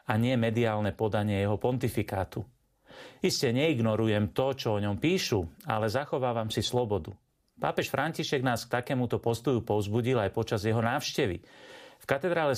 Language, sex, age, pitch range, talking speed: Slovak, male, 40-59, 110-140 Hz, 145 wpm